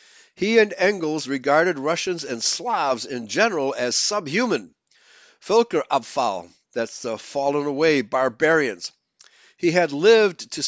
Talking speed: 125 wpm